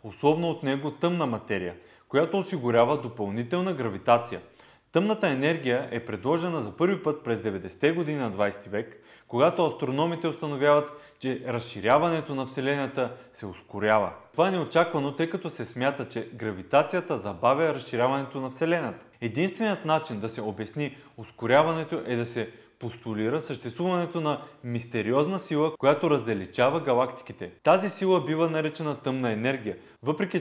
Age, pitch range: 30-49, 115-155 Hz